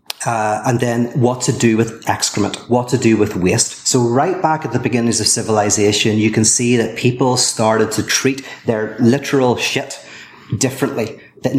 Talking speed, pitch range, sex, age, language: 170 wpm, 110-125 Hz, male, 30-49, English